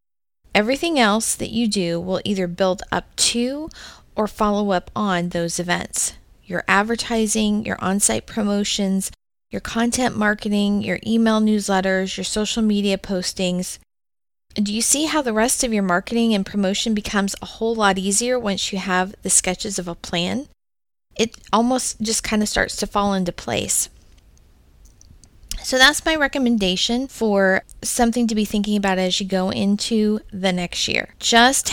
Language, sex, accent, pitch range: English, female, American, 185-225 Hz